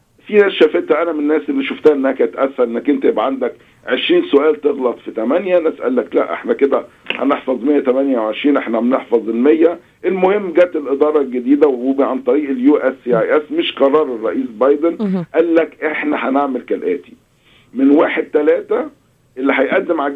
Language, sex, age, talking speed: Arabic, male, 50-69, 160 wpm